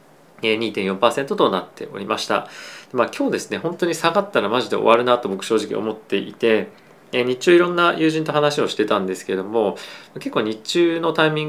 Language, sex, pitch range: Japanese, male, 105-150 Hz